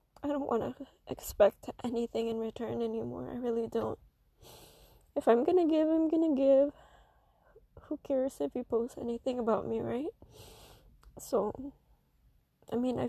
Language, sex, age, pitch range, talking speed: English, female, 10-29, 230-285 Hz, 155 wpm